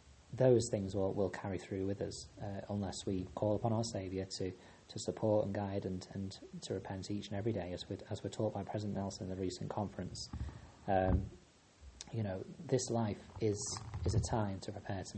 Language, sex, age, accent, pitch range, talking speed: English, male, 30-49, British, 95-115 Hz, 205 wpm